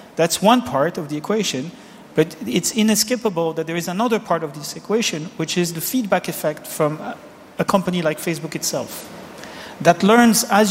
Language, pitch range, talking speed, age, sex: German, 160-205 Hz, 175 wpm, 40-59, male